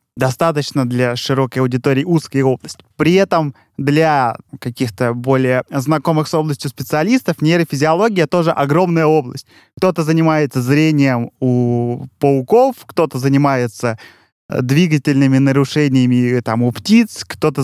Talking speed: 105 wpm